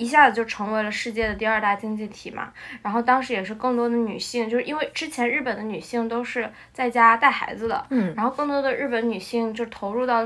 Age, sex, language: 10-29, female, Chinese